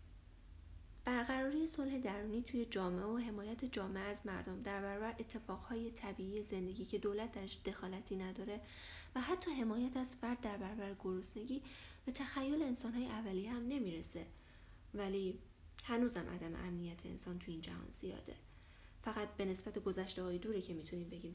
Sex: female